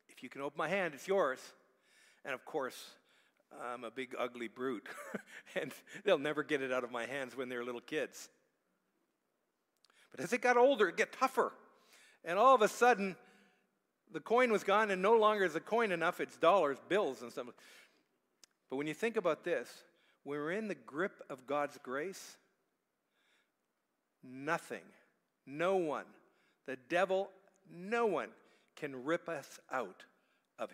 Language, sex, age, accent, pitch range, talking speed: English, male, 50-69, American, 140-190 Hz, 160 wpm